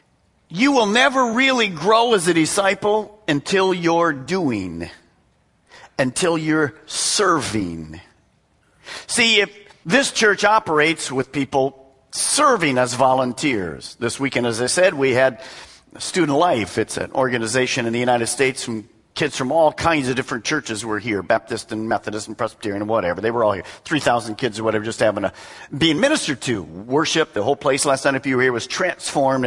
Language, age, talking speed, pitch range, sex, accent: English, 50-69, 170 wpm, 125-185 Hz, male, American